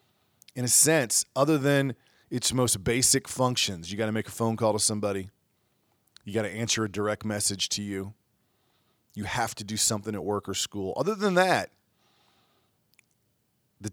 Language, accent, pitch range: English, American, 105-135 Hz